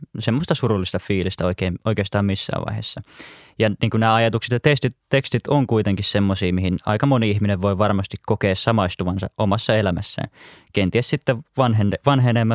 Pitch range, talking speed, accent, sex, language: 100-120 Hz, 150 wpm, native, male, Finnish